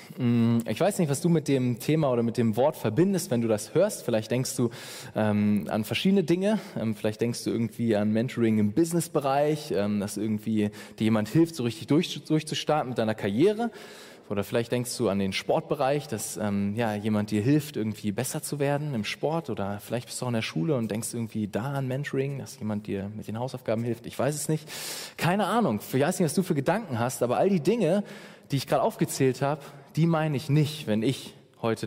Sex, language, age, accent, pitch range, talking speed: male, German, 20-39, German, 115-155 Hz, 220 wpm